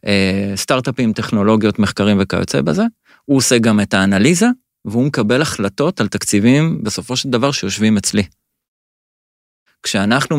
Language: Hebrew